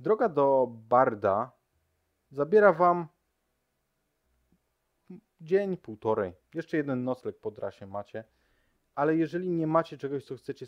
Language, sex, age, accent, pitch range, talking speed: Polish, male, 20-39, native, 95-130 Hz, 105 wpm